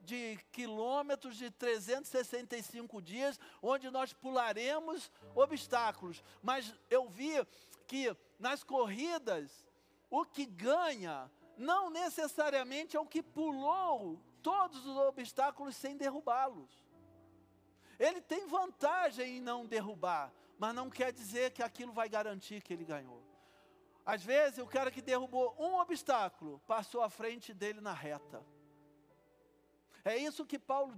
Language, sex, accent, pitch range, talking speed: Portuguese, male, Brazilian, 220-275 Hz, 125 wpm